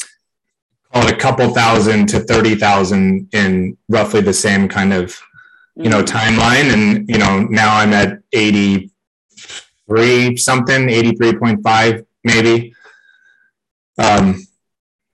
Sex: male